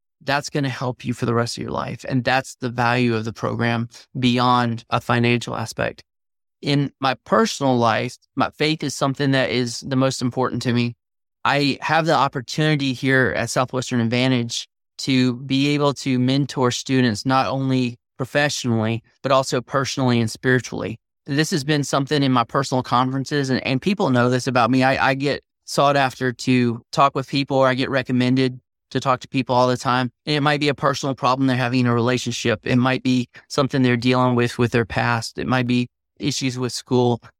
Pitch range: 125-135 Hz